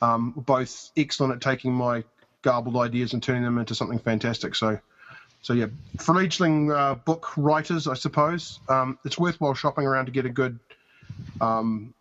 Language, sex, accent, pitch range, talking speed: English, male, Australian, 125-155 Hz, 170 wpm